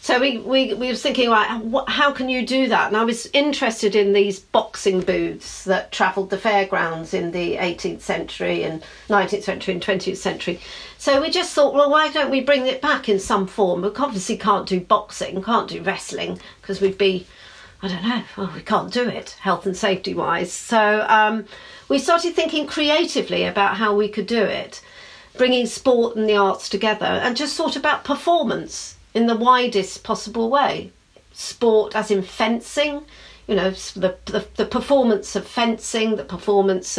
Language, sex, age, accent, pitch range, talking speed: English, female, 50-69, British, 200-265 Hz, 180 wpm